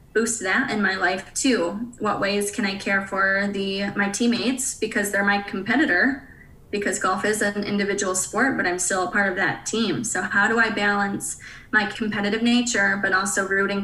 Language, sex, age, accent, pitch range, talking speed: English, female, 20-39, American, 195-220 Hz, 190 wpm